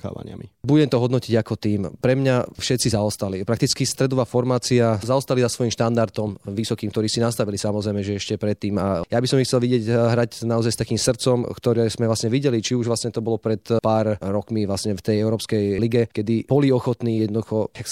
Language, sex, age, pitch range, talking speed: Slovak, male, 20-39, 105-120 Hz, 195 wpm